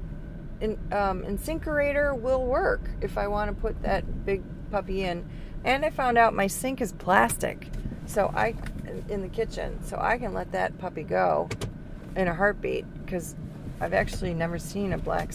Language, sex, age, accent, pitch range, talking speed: English, female, 30-49, American, 170-250 Hz, 170 wpm